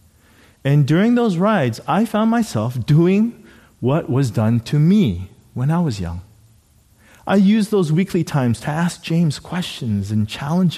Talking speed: 155 wpm